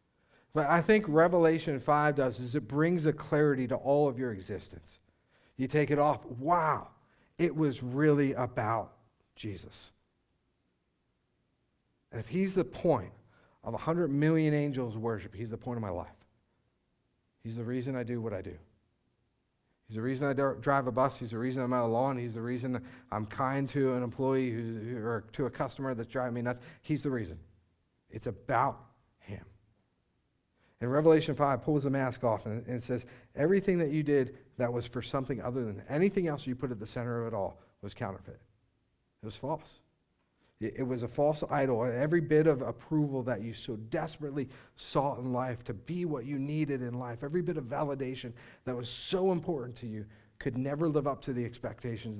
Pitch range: 115-145 Hz